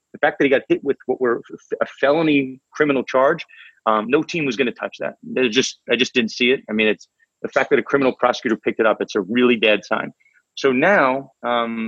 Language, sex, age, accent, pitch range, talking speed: English, male, 30-49, American, 115-145 Hz, 240 wpm